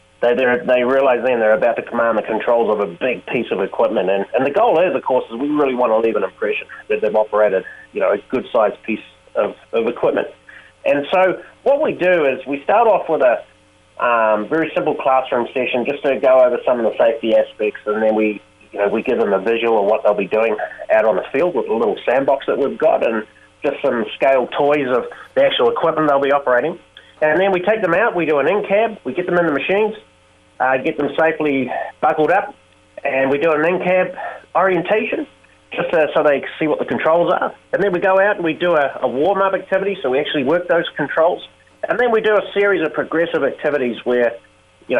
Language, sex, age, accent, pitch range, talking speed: English, male, 30-49, Australian, 125-190 Hz, 230 wpm